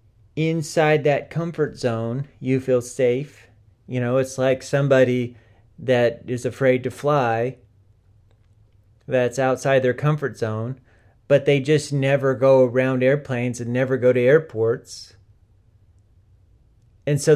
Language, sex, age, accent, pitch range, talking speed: English, male, 40-59, American, 105-135 Hz, 125 wpm